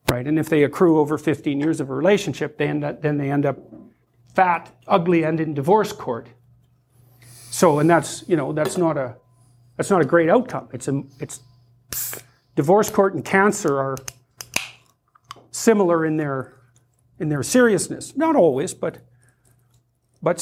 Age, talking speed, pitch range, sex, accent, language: 50-69, 150 wpm, 135-180 Hz, male, American, English